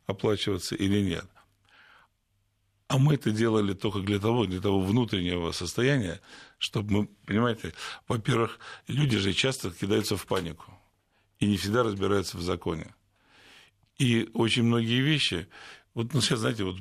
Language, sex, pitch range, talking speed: Russian, male, 95-110 Hz, 140 wpm